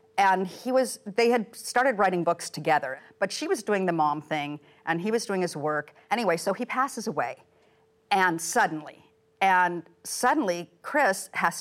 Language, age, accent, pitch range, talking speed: English, 50-69, American, 155-195 Hz, 170 wpm